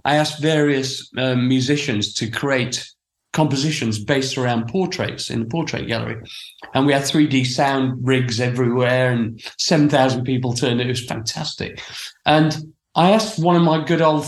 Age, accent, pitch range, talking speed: 40-59, British, 125-170 Hz, 155 wpm